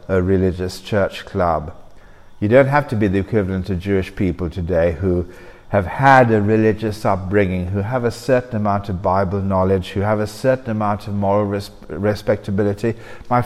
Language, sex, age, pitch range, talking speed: English, male, 50-69, 95-130 Hz, 170 wpm